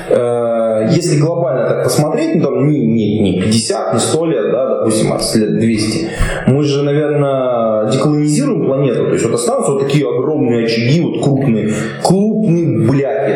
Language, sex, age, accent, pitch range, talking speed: Russian, male, 20-39, native, 110-150 Hz, 150 wpm